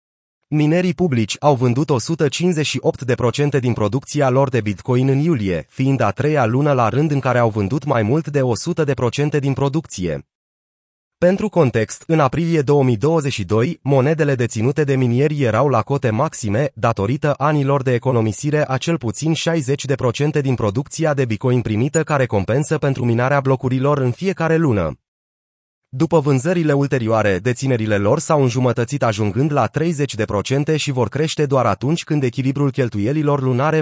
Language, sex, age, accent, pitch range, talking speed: Romanian, male, 30-49, native, 120-150 Hz, 145 wpm